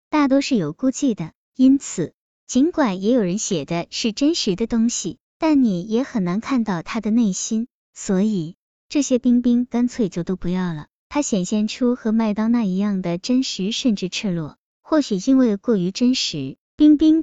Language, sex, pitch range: Chinese, male, 185-245 Hz